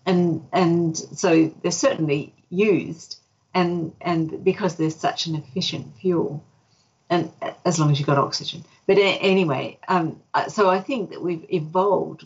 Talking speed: 150 wpm